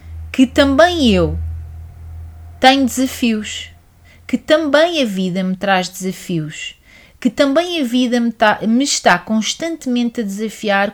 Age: 30-49